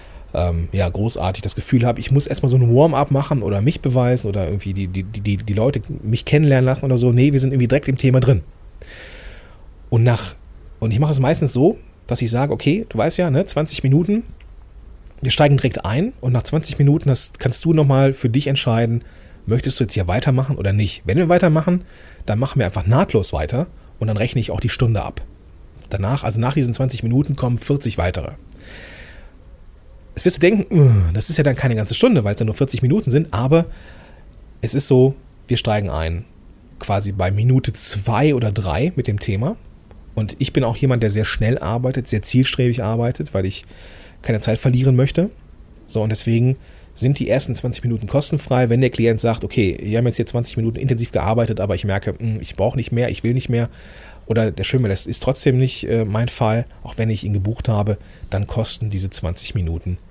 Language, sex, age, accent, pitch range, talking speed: German, male, 30-49, German, 100-130 Hz, 205 wpm